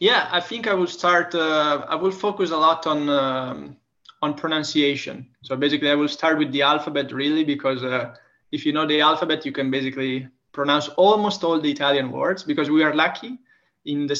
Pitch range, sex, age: 145-185 Hz, male, 20-39